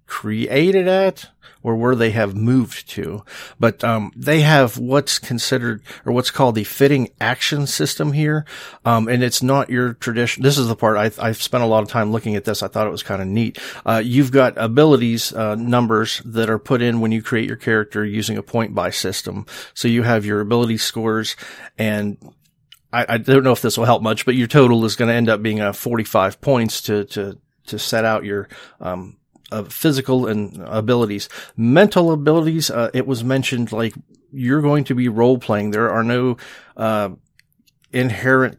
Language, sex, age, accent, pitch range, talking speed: English, male, 40-59, American, 110-125 Hz, 195 wpm